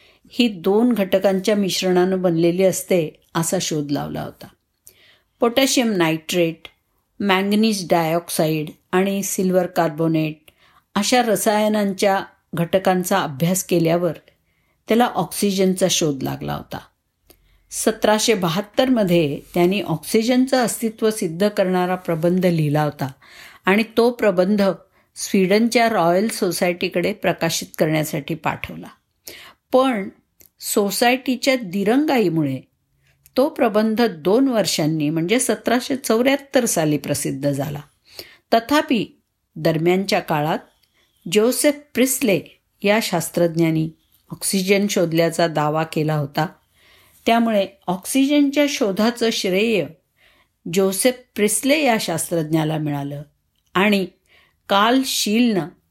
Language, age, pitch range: Marathi, 50-69, 165-220 Hz